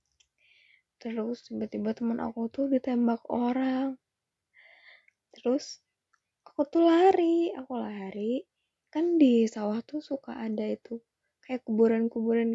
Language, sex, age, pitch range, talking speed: English, female, 20-39, 200-235 Hz, 105 wpm